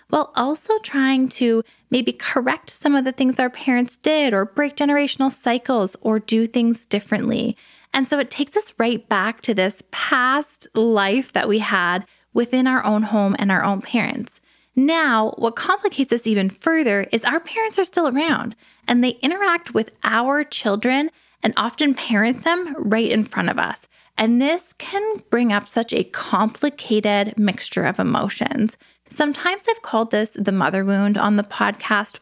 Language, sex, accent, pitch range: English, female, American, 205-270 Hz